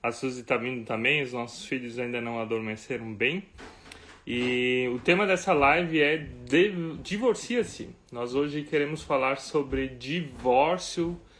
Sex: male